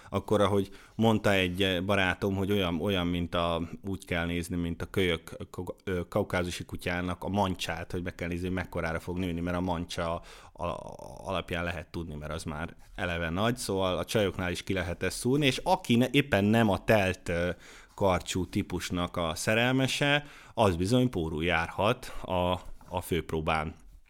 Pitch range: 85-110 Hz